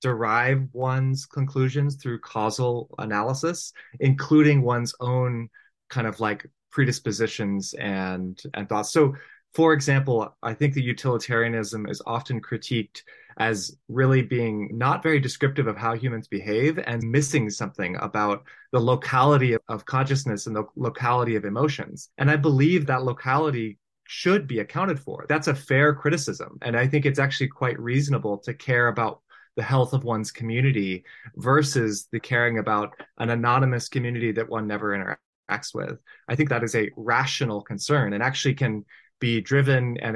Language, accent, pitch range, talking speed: English, American, 115-140 Hz, 155 wpm